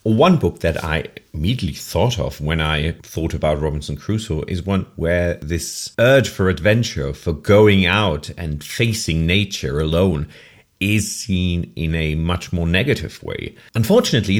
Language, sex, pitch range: English, male, 90-115 Hz